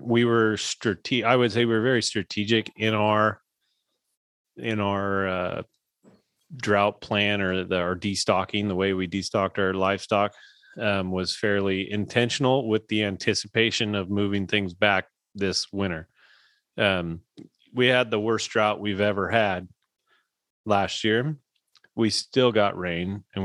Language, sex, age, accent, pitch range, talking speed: English, male, 30-49, American, 100-115 Hz, 145 wpm